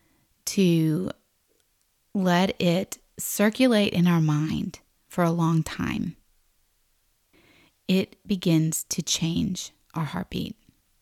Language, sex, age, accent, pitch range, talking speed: English, female, 30-49, American, 175-215 Hz, 95 wpm